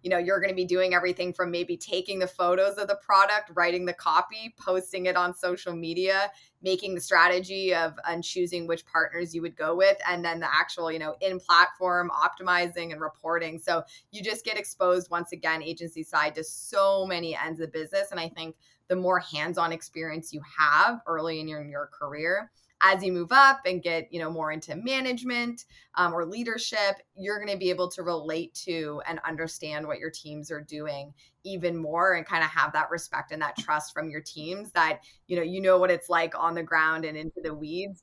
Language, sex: English, female